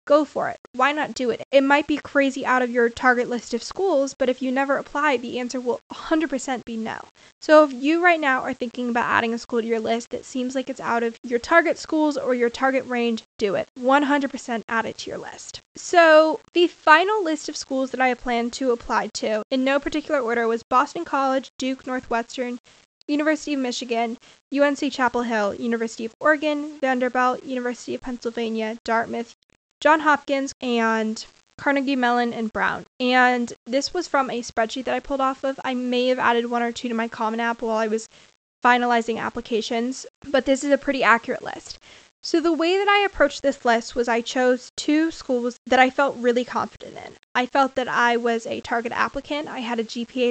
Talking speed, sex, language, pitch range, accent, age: 205 wpm, female, English, 235-280 Hz, American, 10-29